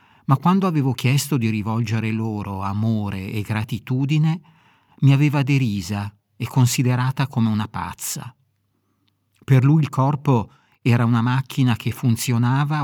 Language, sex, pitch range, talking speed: Italian, male, 105-135 Hz, 125 wpm